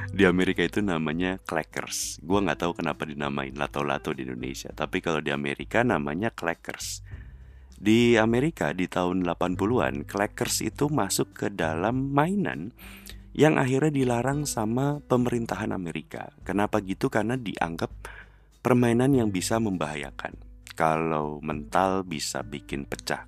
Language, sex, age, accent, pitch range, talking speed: Indonesian, male, 30-49, native, 75-105 Hz, 125 wpm